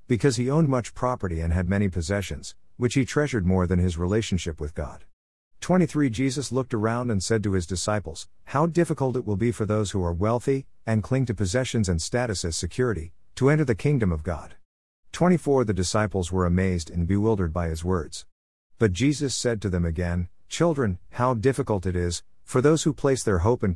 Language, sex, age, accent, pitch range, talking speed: English, male, 50-69, American, 90-125 Hz, 200 wpm